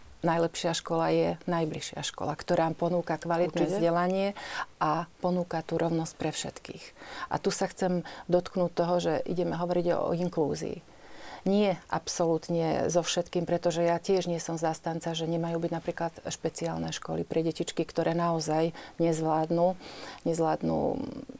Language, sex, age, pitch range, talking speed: Slovak, female, 40-59, 165-180 Hz, 135 wpm